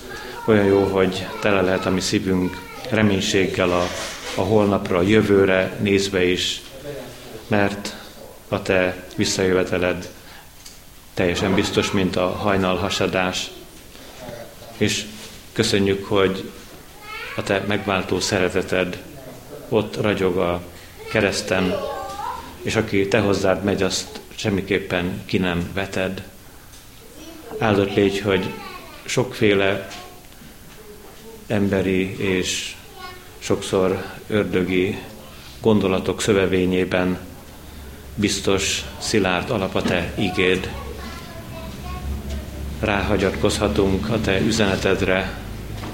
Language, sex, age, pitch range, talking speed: Hungarian, male, 30-49, 90-105 Hz, 85 wpm